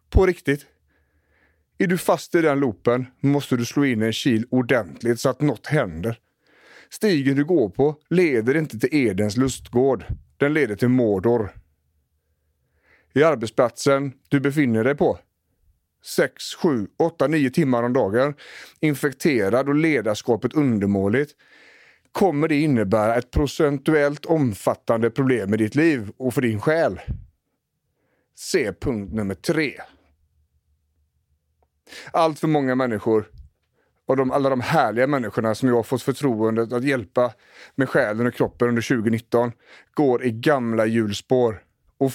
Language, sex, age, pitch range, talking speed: English, male, 40-59, 110-145 Hz, 135 wpm